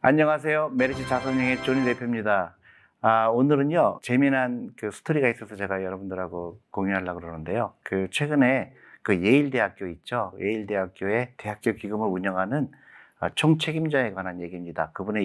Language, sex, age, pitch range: Korean, male, 50-69, 90-120 Hz